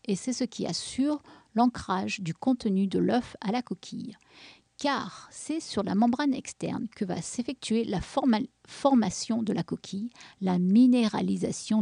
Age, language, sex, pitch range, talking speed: 50-69, French, female, 205-255 Hz, 145 wpm